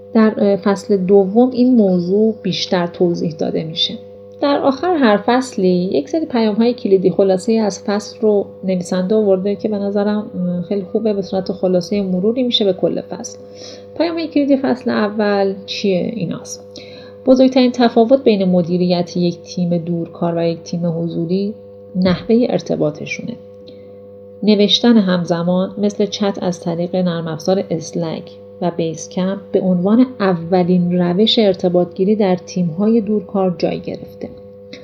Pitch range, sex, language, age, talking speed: 170-210 Hz, female, Persian, 40-59, 140 wpm